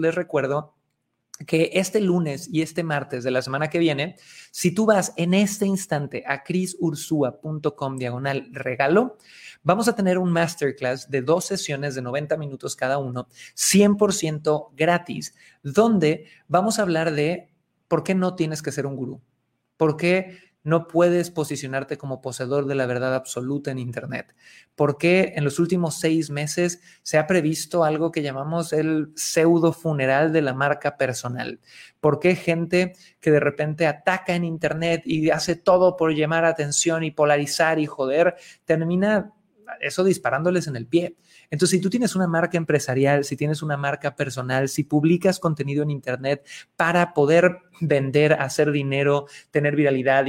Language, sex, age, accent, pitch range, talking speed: Spanish, male, 30-49, Mexican, 140-175 Hz, 160 wpm